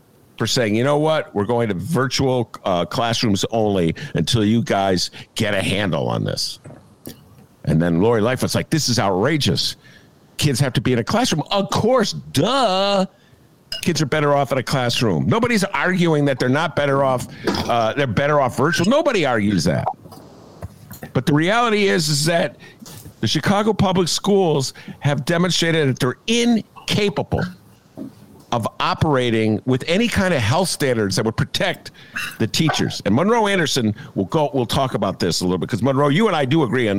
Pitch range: 120-190 Hz